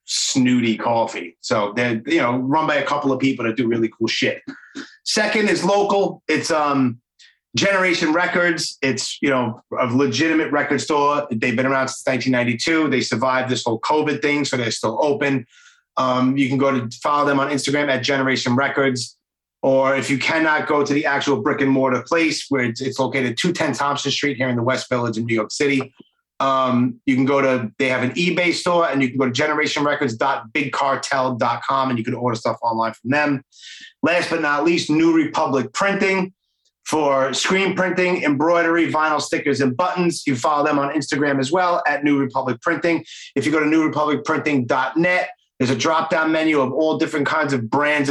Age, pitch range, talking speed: 30-49, 130-160 Hz, 190 wpm